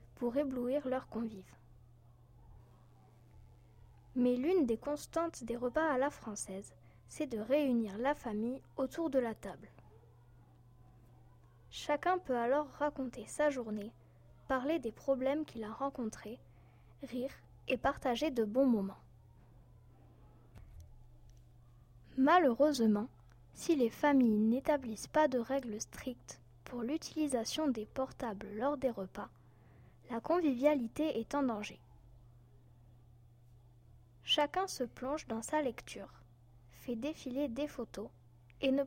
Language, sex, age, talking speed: French, female, 10-29, 115 wpm